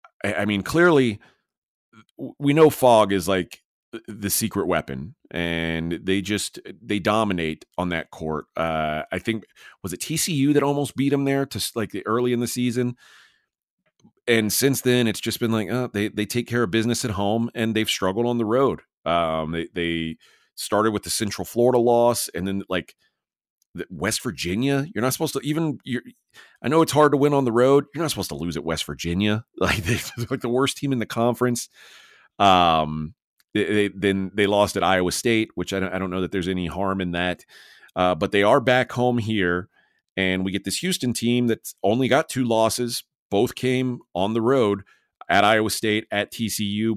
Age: 30-49